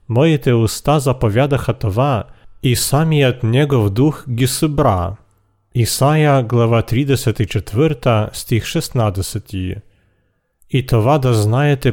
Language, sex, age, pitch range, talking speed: Bulgarian, male, 40-59, 110-140 Hz, 90 wpm